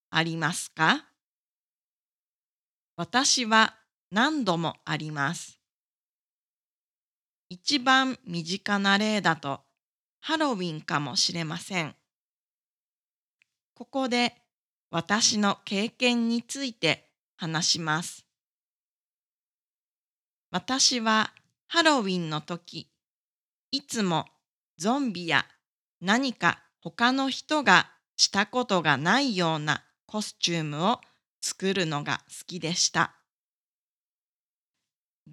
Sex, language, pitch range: female, Japanese, 165-240 Hz